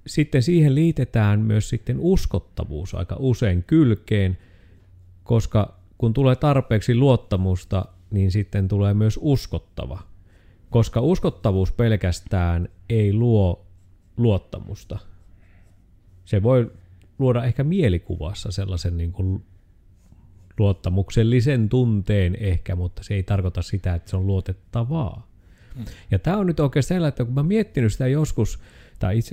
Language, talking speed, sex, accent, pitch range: Finnish, 115 wpm, male, native, 95-130 Hz